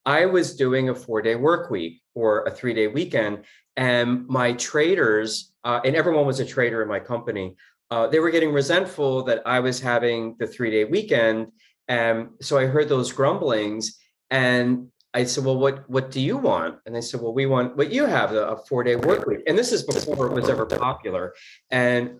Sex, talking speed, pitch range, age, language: male, 205 wpm, 120-150 Hz, 30-49, English